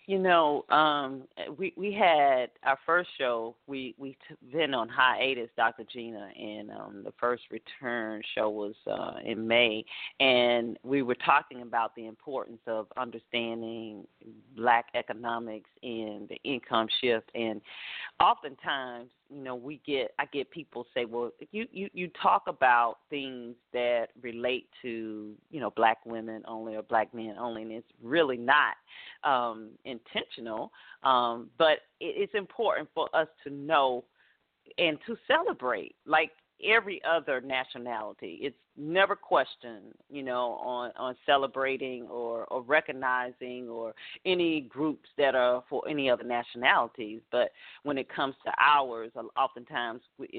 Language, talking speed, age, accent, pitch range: English, 140 wpm, 40-59, American, 115-145 Hz